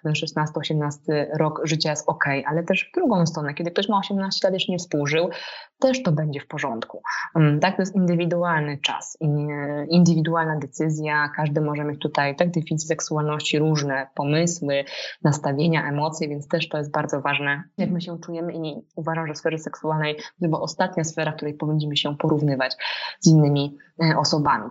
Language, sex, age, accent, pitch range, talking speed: Polish, female, 20-39, native, 145-165 Hz, 165 wpm